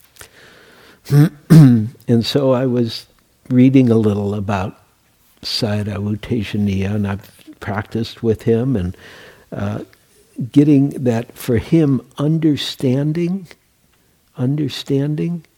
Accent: American